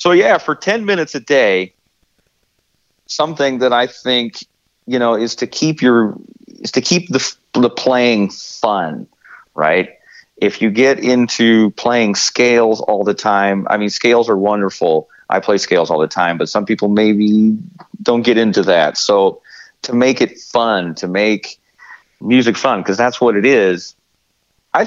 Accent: American